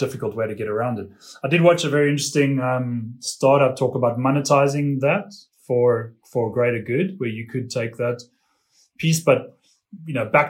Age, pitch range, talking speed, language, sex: 20-39, 125-155 Hz, 185 wpm, English, male